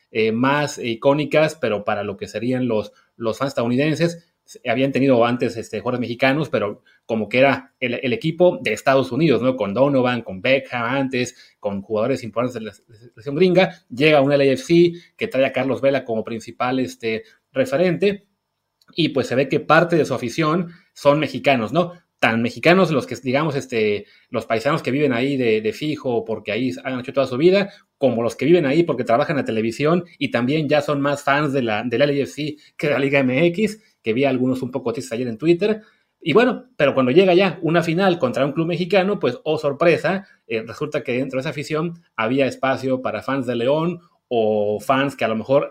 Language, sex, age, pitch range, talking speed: Spanish, male, 30-49, 120-160 Hz, 205 wpm